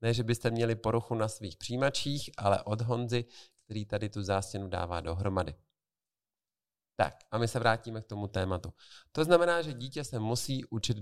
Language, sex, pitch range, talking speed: Czech, male, 100-125 Hz, 175 wpm